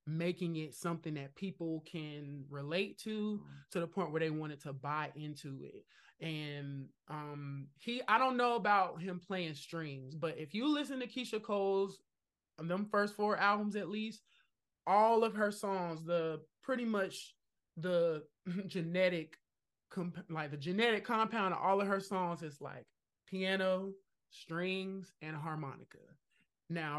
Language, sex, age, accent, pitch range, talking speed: English, male, 20-39, American, 145-190 Hz, 145 wpm